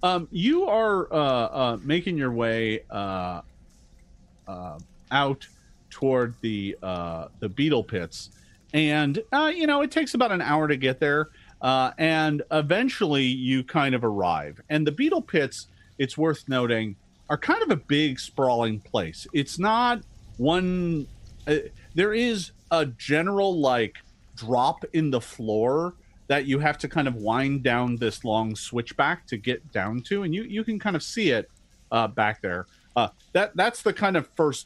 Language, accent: English, American